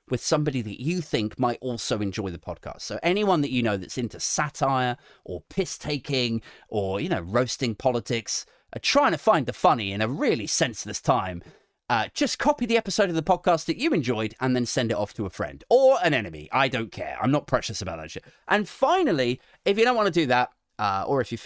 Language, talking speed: English, 225 wpm